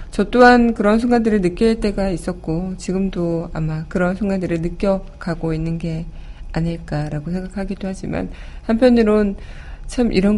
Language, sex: Korean, female